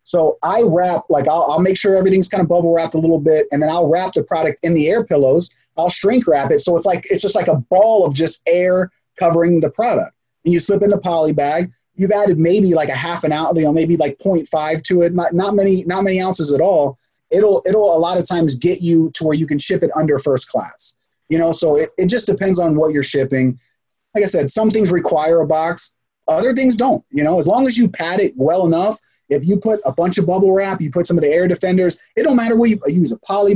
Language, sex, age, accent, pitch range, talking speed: English, male, 30-49, American, 150-195 Hz, 265 wpm